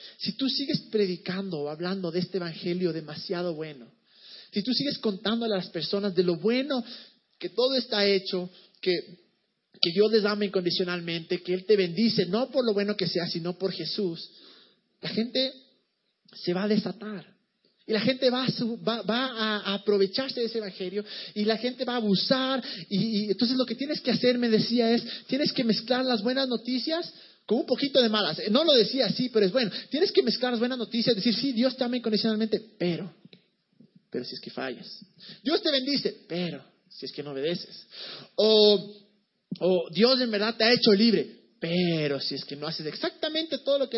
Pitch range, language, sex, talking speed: 190-245 Hz, Spanish, male, 195 wpm